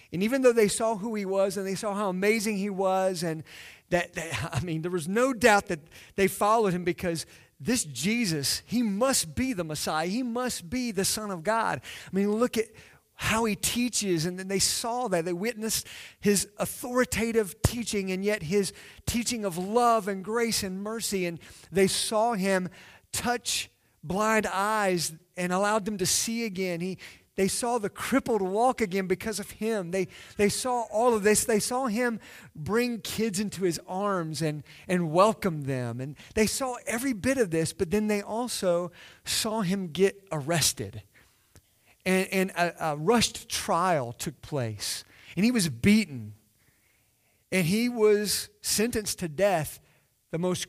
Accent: American